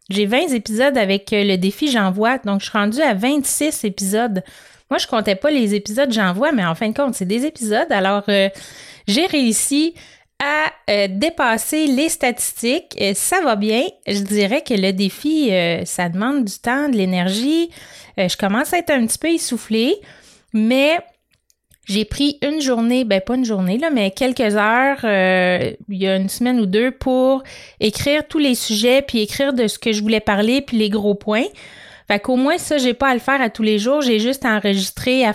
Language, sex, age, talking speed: French, female, 30-49, 200 wpm